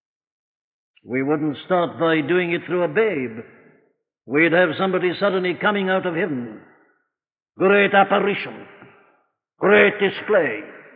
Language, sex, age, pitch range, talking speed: English, male, 60-79, 145-180 Hz, 115 wpm